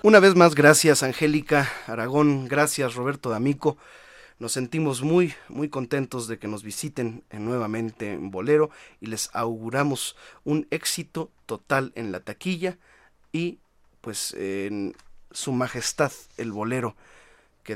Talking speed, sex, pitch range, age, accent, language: 130 wpm, male, 115-155 Hz, 30-49, Mexican, Spanish